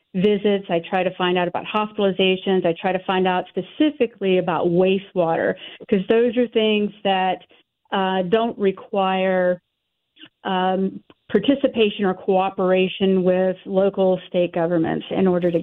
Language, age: English, 40-59